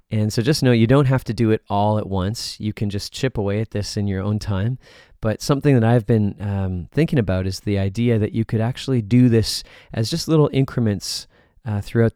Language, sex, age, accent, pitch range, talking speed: English, male, 20-39, American, 100-120 Hz, 230 wpm